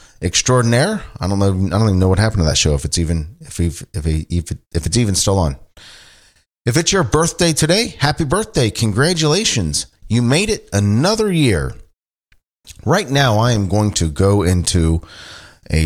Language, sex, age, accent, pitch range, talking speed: English, male, 40-59, American, 85-115 Hz, 185 wpm